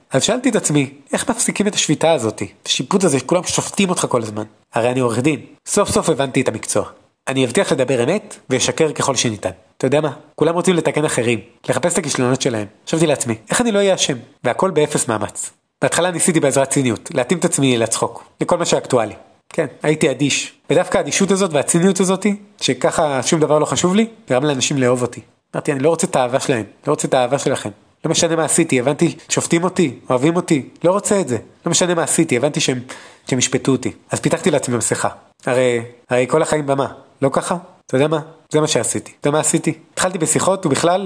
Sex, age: male, 30-49